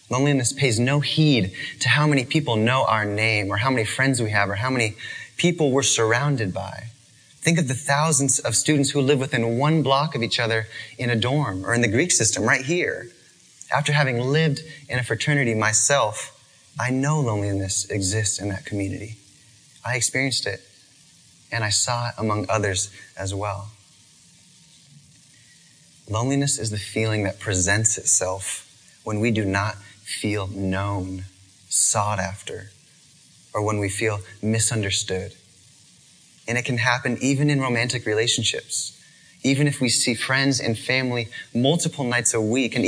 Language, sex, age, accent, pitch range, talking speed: English, male, 20-39, American, 105-135 Hz, 160 wpm